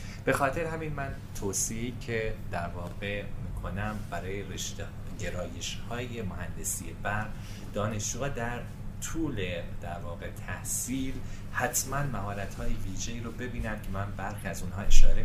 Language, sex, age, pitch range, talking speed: Persian, male, 30-49, 95-110 Hz, 130 wpm